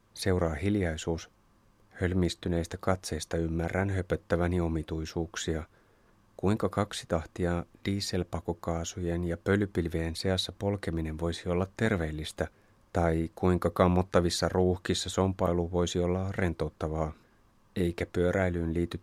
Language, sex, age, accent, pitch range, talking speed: Finnish, male, 30-49, native, 85-95 Hz, 90 wpm